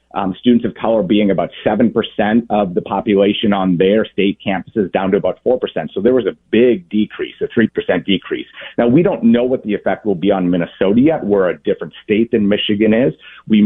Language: English